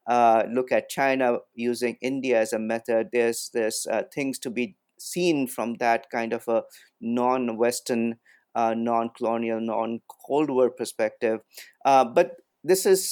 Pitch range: 115-130 Hz